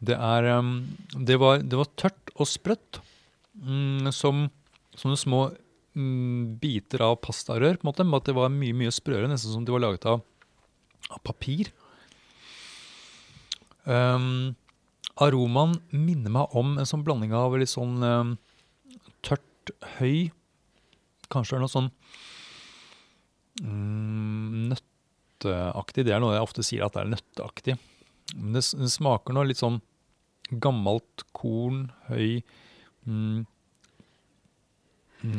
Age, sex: 30-49, male